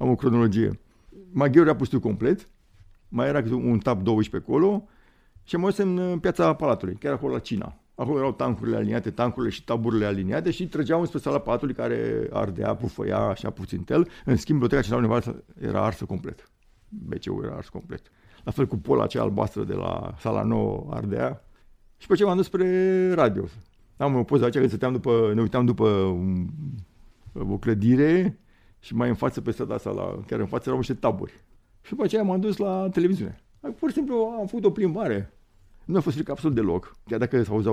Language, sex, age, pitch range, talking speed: Romanian, male, 50-69, 100-145 Hz, 195 wpm